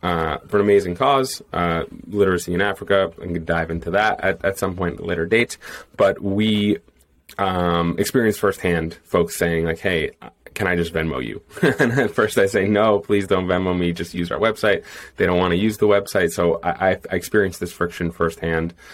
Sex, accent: male, American